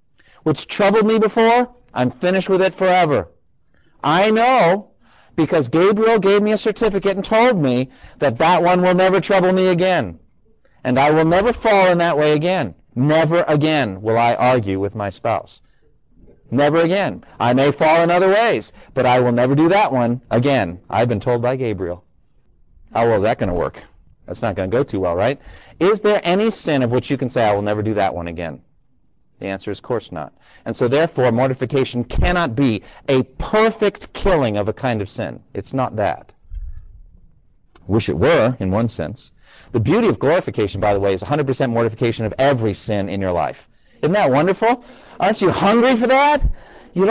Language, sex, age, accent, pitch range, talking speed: English, male, 40-59, American, 115-190 Hz, 190 wpm